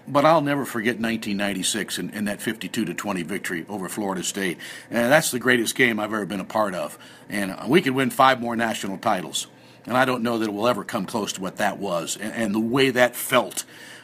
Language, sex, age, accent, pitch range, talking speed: English, male, 50-69, American, 120-160 Hz, 220 wpm